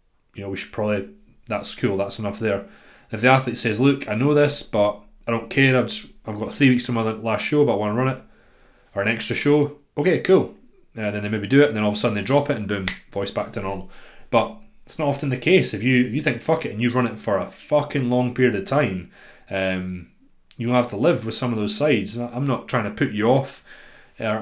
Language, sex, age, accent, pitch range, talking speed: English, male, 20-39, British, 105-130 Hz, 265 wpm